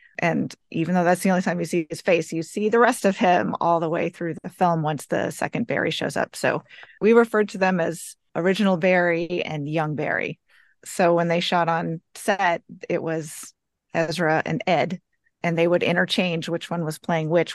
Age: 30-49